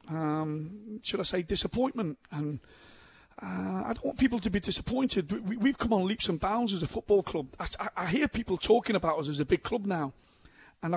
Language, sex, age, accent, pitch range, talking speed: English, male, 40-59, British, 155-200 Hz, 215 wpm